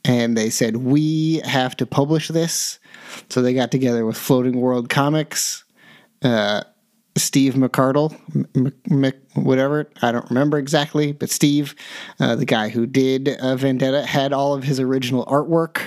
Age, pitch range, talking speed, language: 30-49, 125-145 Hz, 150 wpm, English